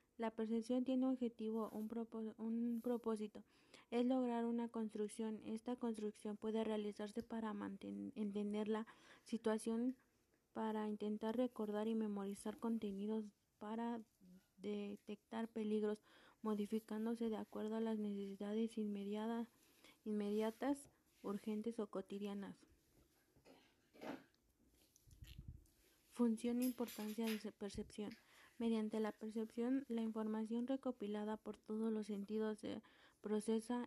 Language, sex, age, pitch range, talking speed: Spanish, female, 30-49, 210-230 Hz, 105 wpm